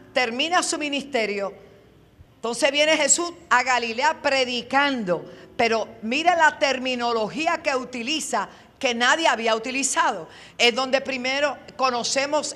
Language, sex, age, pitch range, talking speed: Spanish, female, 50-69, 235-310 Hz, 110 wpm